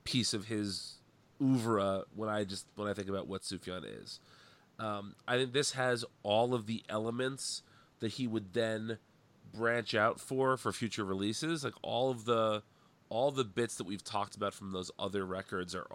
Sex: male